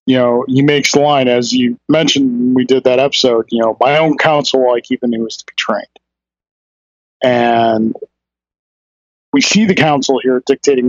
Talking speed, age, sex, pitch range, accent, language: 185 wpm, 40-59, male, 115-150 Hz, American, English